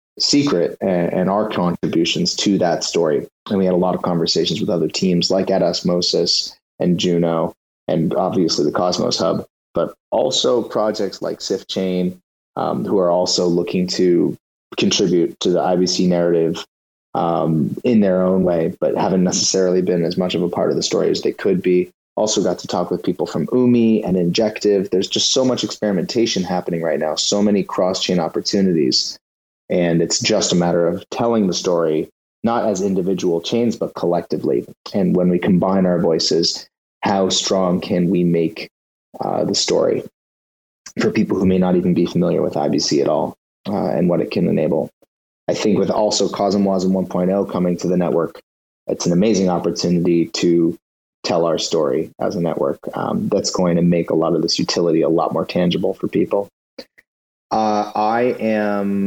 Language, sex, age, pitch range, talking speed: English, male, 30-49, 85-100 Hz, 180 wpm